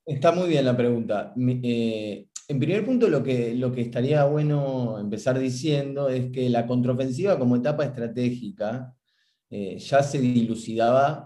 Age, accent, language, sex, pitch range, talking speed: 20-39, Argentinian, Spanish, male, 110-135 Hz, 145 wpm